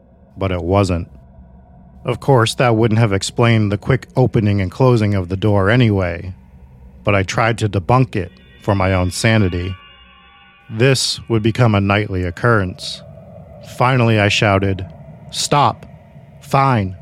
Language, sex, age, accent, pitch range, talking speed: English, male, 40-59, American, 95-120 Hz, 140 wpm